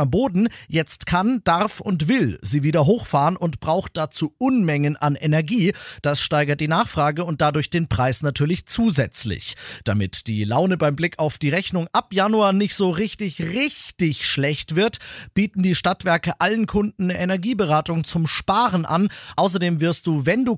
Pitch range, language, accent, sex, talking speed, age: 140-190 Hz, German, German, male, 165 wpm, 40-59